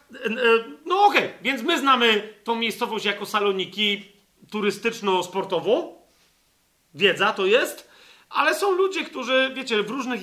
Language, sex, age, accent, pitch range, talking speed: Polish, male, 40-59, native, 200-255 Hz, 125 wpm